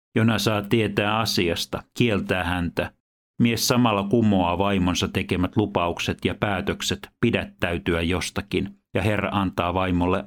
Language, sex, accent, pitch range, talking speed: Finnish, male, native, 90-105 Hz, 115 wpm